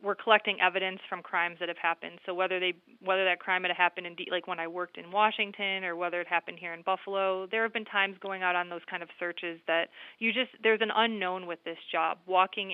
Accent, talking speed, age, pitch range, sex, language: American, 245 wpm, 30-49, 175-200 Hz, female, English